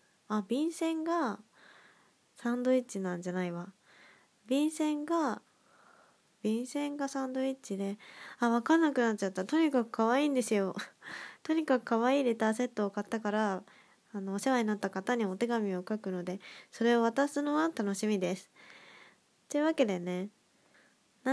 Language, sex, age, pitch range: Japanese, female, 20-39, 195-260 Hz